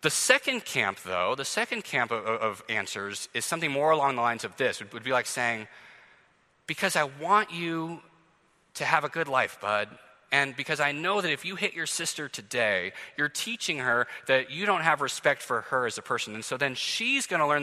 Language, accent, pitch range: English, American, 135-185 Hz